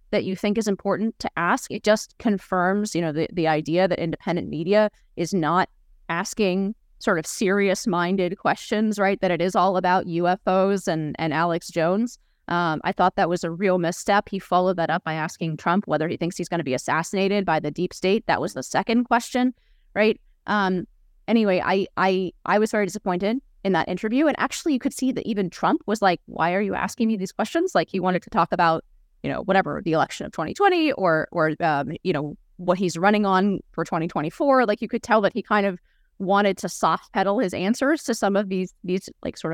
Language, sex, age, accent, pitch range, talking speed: English, female, 30-49, American, 170-210 Hz, 215 wpm